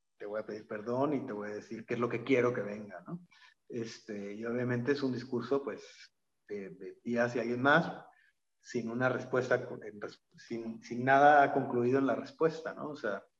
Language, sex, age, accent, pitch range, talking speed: Spanish, male, 40-59, Mexican, 115-135 Hz, 195 wpm